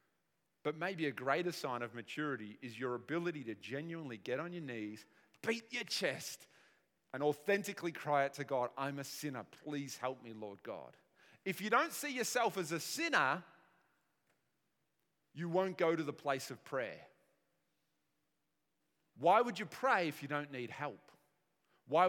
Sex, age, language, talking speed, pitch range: male, 30-49, English, 160 wpm, 125-175 Hz